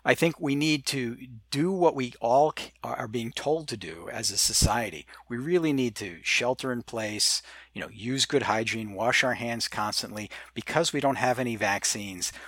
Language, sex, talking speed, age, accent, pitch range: English, male, 190 wpm, 50-69, American, 110-140 Hz